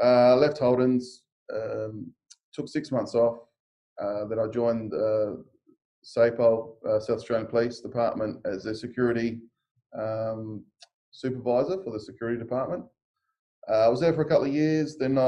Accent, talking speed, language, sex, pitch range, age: Australian, 150 wpm, English, male, 115-130 Hz, 20-39